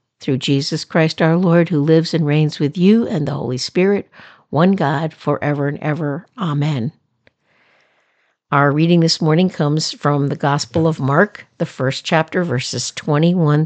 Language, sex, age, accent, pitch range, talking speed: English, female, 60-79, American, 145-185 Hz, 160 wpm